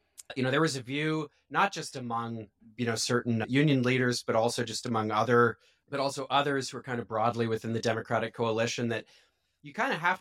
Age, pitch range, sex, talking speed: 30-49, 120-145 Hz, male, 210 wpm